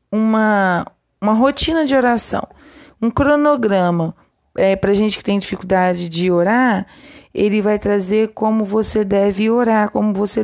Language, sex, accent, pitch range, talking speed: Portuguese, female, Brazilian, 205-250 Hz, 140 wpm